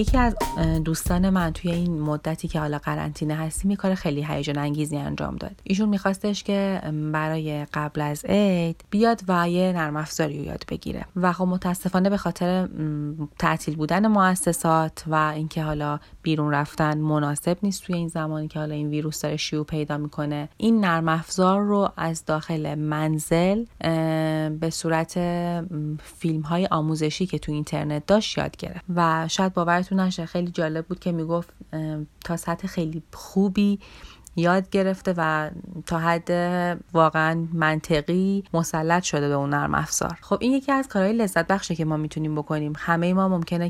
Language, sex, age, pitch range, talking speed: Persian, female, 30-49, 155-180 Hz, 160 wpm